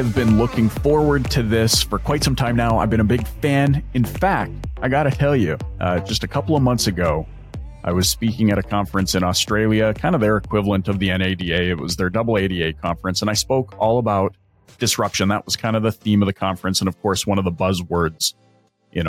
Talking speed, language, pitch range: 235 wpm, English, 90-115 Hz